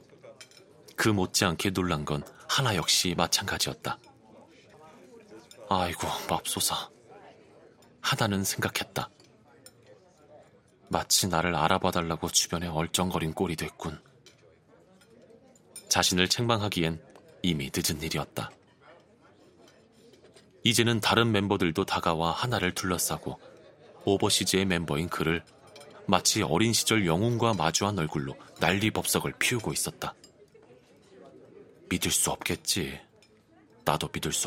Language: Korean